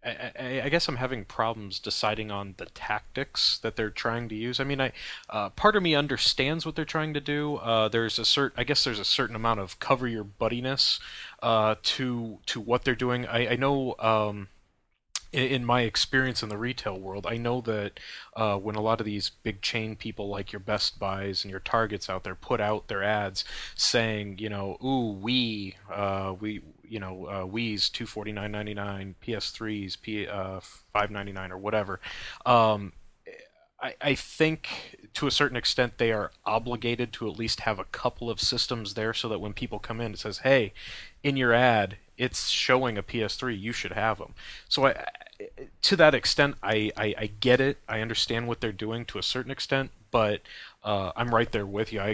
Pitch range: 105-125 Hz